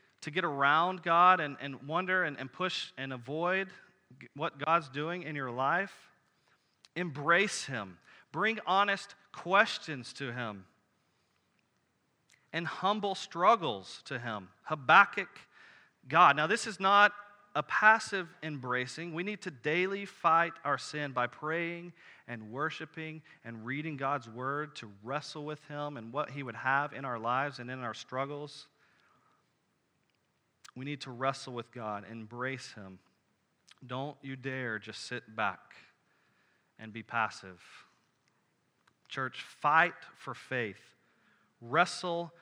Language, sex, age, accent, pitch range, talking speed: English, male, 40-59, American, 125-180 Hz, 130 wpm